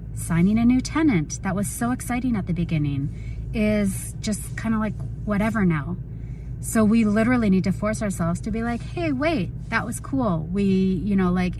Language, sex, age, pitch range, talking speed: English, female, 30-49, 140-195 Hz, 190 wpm